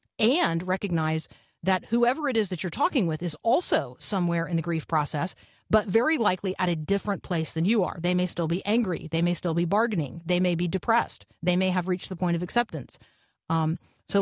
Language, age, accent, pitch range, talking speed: English, 50-69, American, 170-200 Hz, 215 wpm